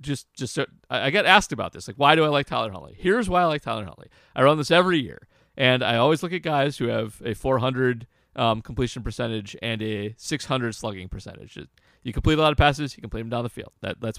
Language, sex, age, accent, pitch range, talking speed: English, male, 40-59, American, 115-145 Hz, 245 wpm